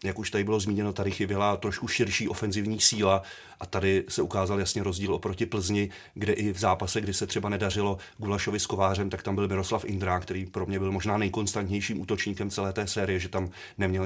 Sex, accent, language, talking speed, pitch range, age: male, native, Czech, 205 wpm, 95-105 Hz, 30-49